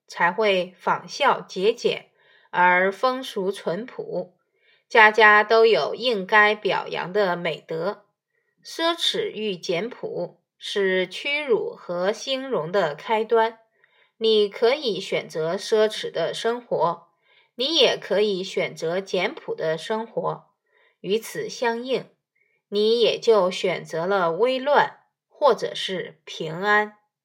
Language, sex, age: Chinese, female, 20-39